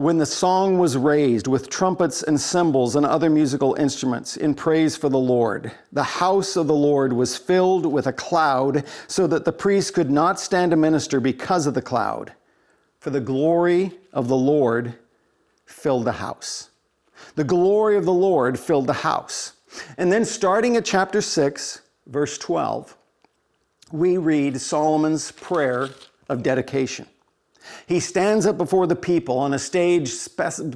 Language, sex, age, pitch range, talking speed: English, male, 50-69, 150-190 Hz, 160 wpm